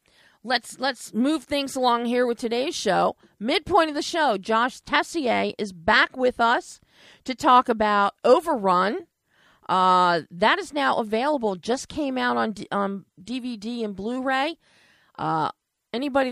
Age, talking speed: 40-59, 145 wpm